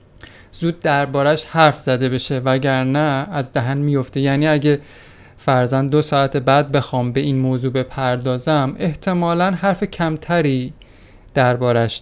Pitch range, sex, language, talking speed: 135-180 Hz, male, Persian, 125 wpm